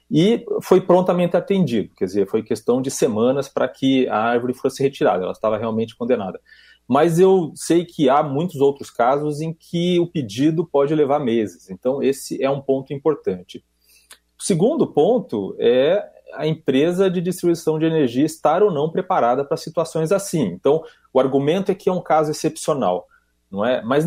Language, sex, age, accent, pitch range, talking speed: Portuguese, male, 30-49, Brazilian, 115-180 Hz, 175 wpm